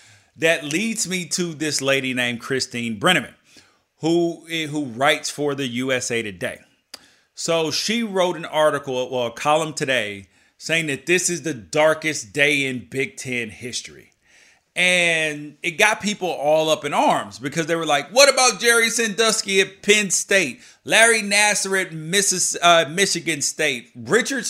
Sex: male